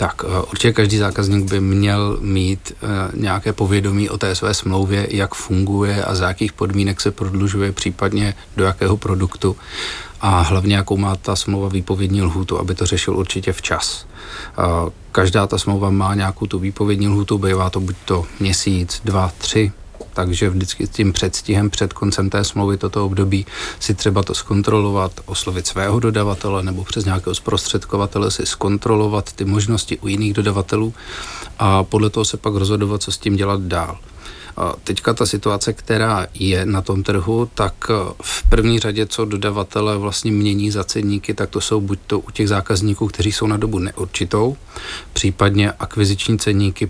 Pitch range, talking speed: 95-105 Hz, 165 wpm